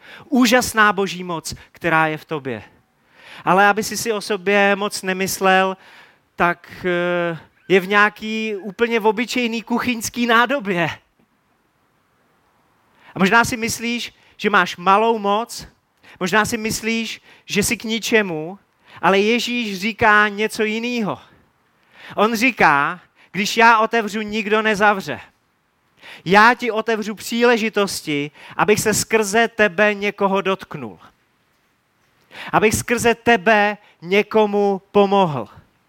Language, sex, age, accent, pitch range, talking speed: Czech, male, 30-49, native, 180-225 Hz, 110 wpm